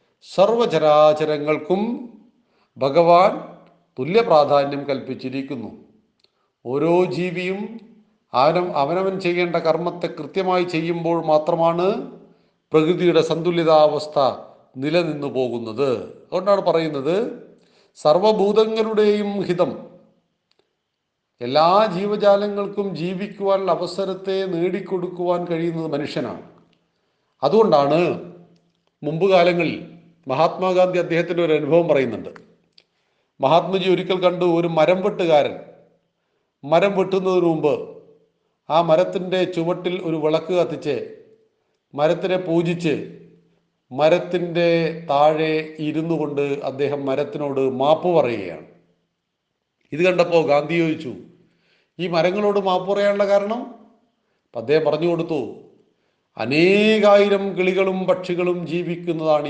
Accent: native